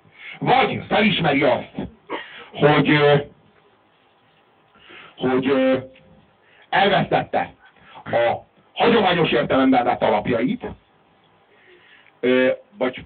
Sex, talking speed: male, 55 wpm